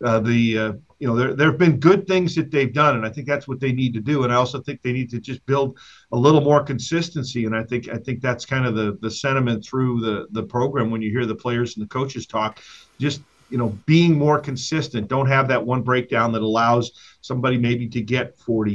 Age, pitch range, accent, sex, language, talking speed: 50-69, 115-145 Hz, American, male, English, 250 wpm